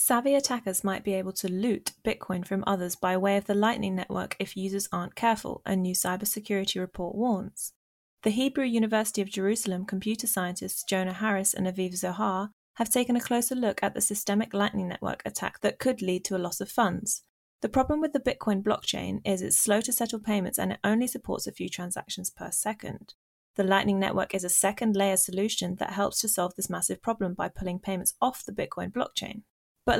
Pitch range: 190-225 Hz